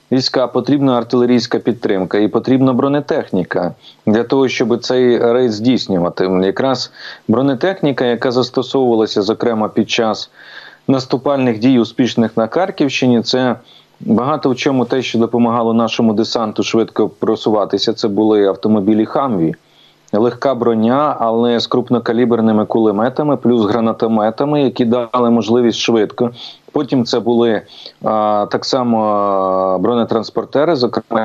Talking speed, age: 115 wpm, 30-49